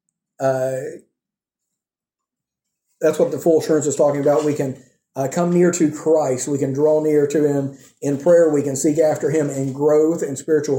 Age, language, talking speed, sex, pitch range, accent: 40-59, English, 185 wpm, male, 145-165 Hz, American